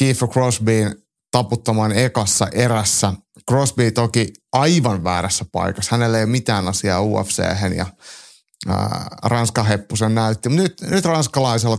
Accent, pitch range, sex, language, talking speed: native, 105-130 Hz, male, Finnish, 120 wpm